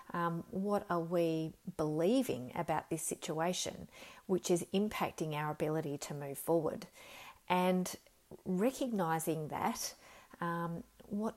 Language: English